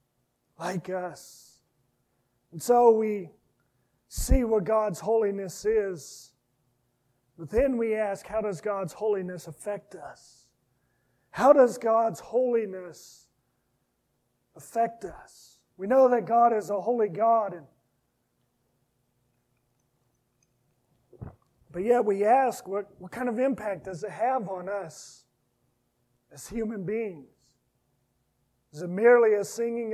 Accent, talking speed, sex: American, 110 wpm, male